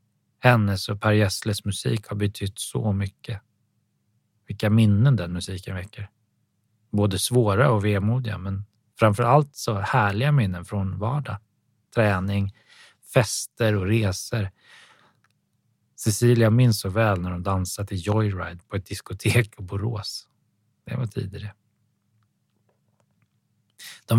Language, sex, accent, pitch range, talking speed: Swedish, male, native, 105-120 Hz, 115 wpm